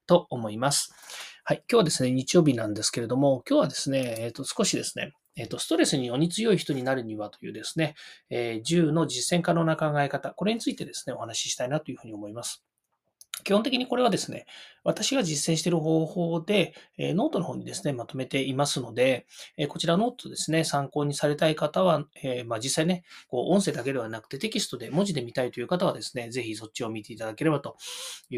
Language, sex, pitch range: Japanese, male, 125-175 Hz